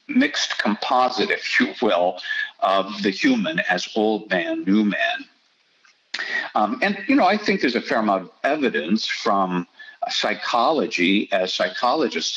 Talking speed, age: 140 wpm, 60-79